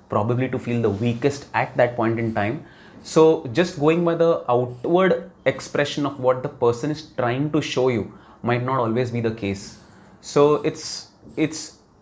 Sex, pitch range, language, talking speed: male, 115-145 Hz, Hindi, 175 wpm